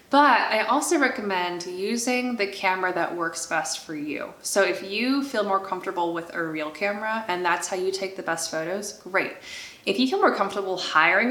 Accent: American